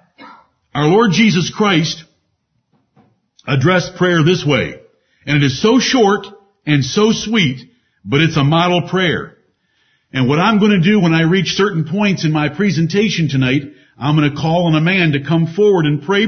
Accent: American